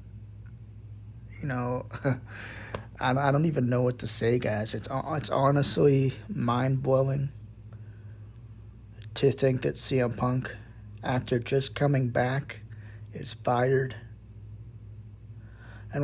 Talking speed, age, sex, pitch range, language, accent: 95 wpm, 20-39, male, 110-130 Hz, English, American